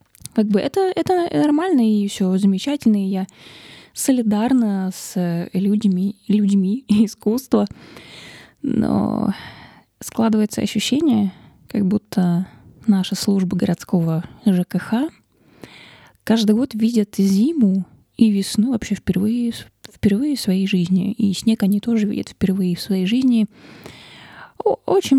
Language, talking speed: Russian, 110 wpm